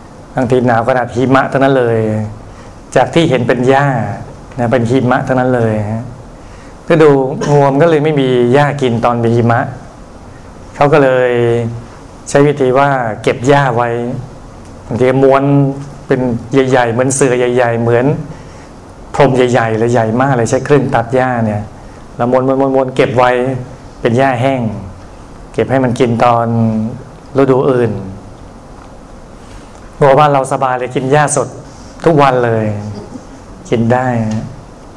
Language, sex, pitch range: Thai, male, 115-135 Hz